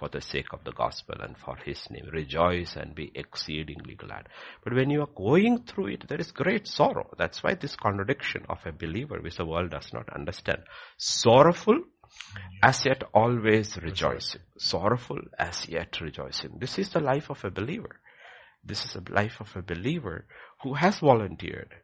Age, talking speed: 60-79, 180 wpm